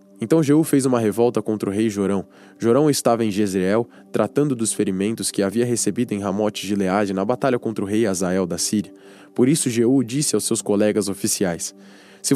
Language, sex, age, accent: Portuguese, male, 10-29, Brazilian